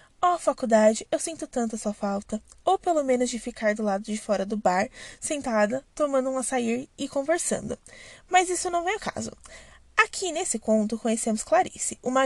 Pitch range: 225-335 Hz